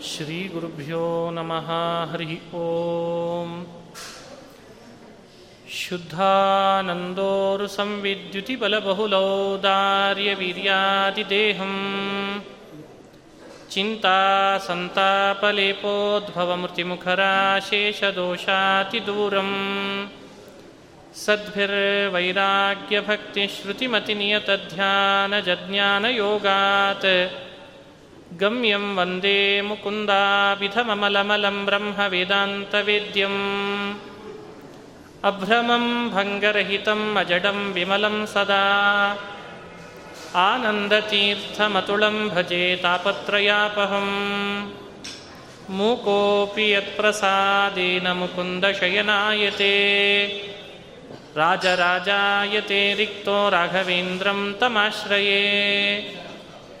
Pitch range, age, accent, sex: 195-205 Hz, 30-49, native, male